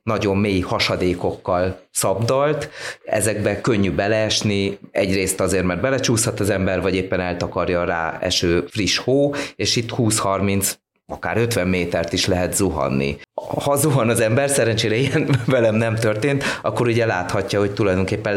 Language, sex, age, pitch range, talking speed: Hungarian, male, 30-49, 95-115 Hz, 145 wpm